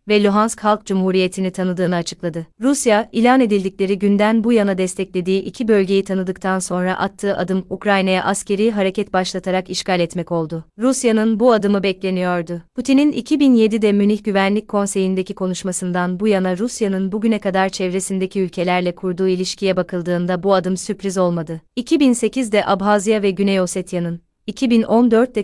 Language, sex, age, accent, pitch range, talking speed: Turkish, female, 30-49, native, 185-215 Hz, 130 wpm